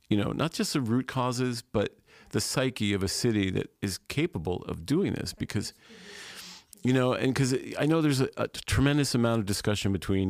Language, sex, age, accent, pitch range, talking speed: English, male, 40-59, American, 95-120 Hz, 200 wpm